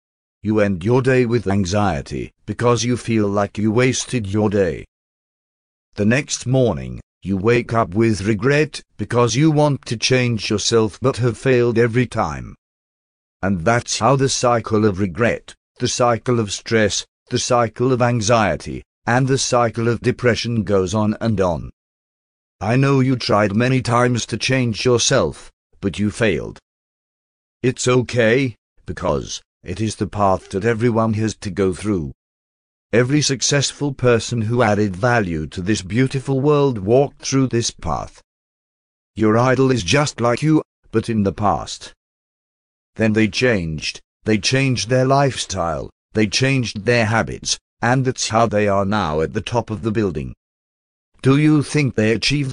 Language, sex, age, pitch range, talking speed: English, male, 50-69, 100-125 Hz, 155 wpm